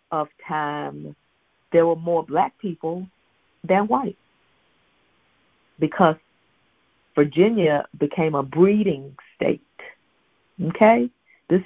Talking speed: 85 wpm